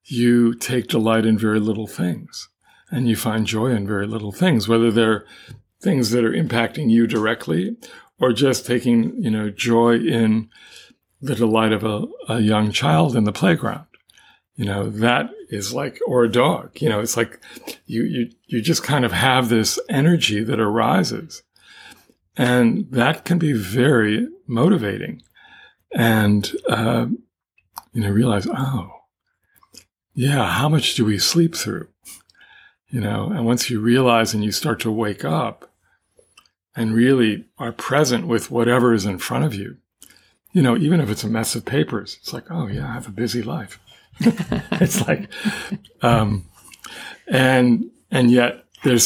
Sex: male